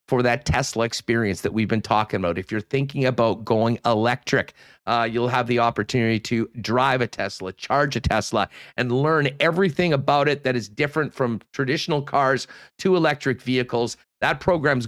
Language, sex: English, male